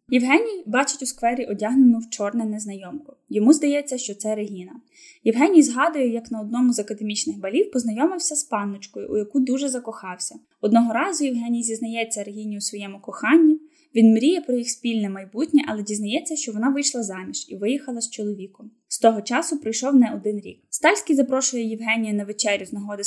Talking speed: 170 wpm